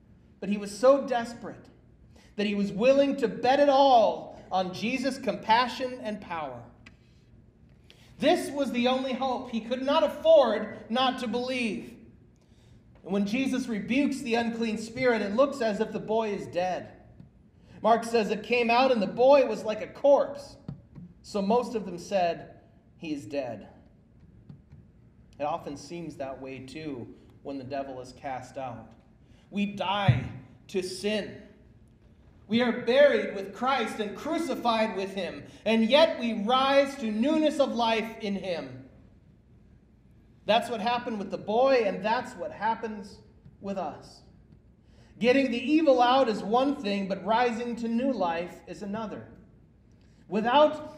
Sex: male